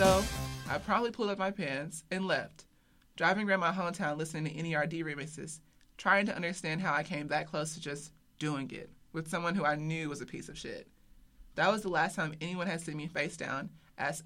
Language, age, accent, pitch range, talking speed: English, 30-49, American, 150-190 Hz, 215 wpm